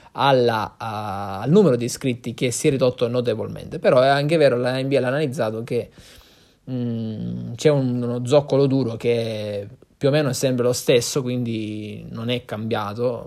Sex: male